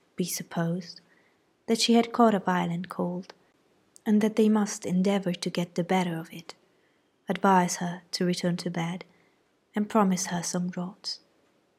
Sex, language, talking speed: female, Italian, 160 wpm